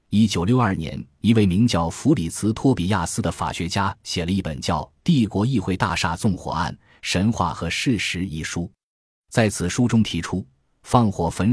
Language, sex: Chinese, male